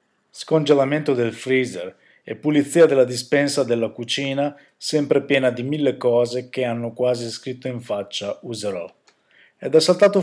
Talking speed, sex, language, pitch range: 140 wpm, male, Italian, 120-150 Hz